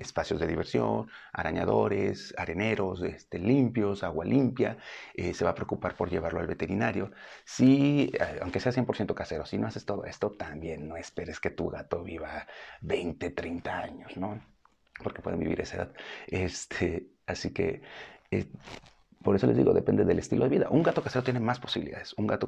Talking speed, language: 175 wpm, Spanish